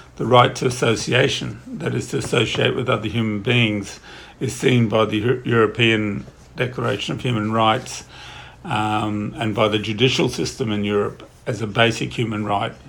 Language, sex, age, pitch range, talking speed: English, male, 50-69, 105-125 Hz, 160 wpm